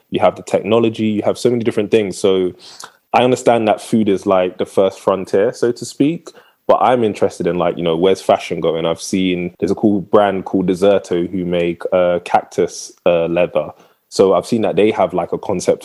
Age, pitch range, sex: 20-39, 85-100 Hz, male